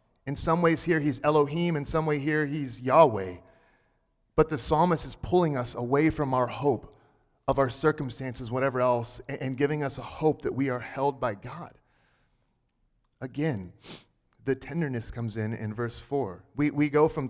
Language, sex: English, male